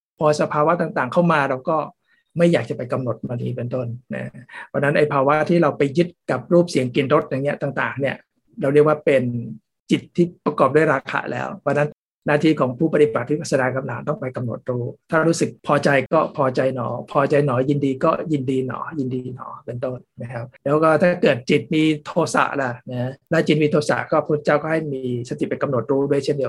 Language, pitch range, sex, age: Thai, 130-155 Hz, male, 60-79